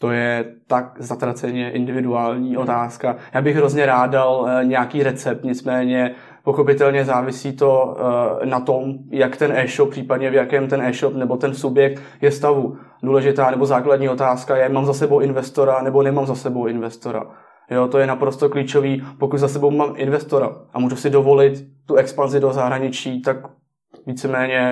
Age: 20-39